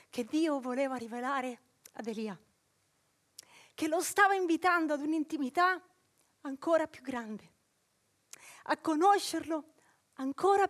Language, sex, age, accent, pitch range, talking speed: Italian, female, 30-49, native, 260-330 Hz, 100 wpm